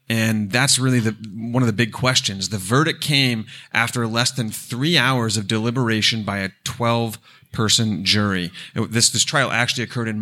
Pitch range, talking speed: 110-135 Hz, 165 wpm